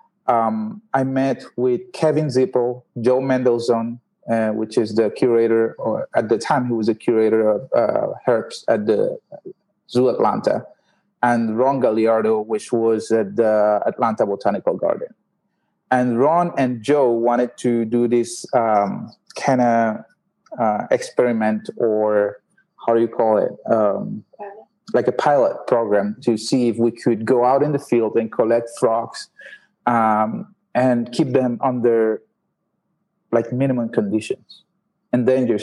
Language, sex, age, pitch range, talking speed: English, male, 30-49, 115-140 Hz, 140 wpm